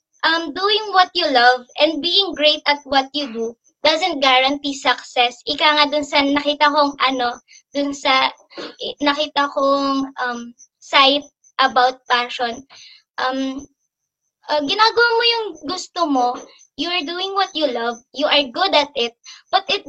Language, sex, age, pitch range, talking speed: Filipino, male, 20-39, 280-340 Hz, 150 wpm